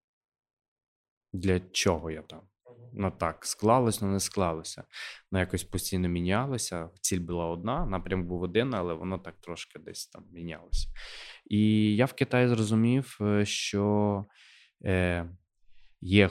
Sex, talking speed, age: male, 130 wpm, 20-39